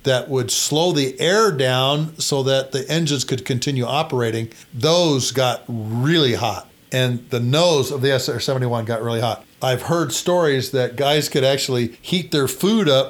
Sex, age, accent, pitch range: male, 50-69, American, 120-150 Hz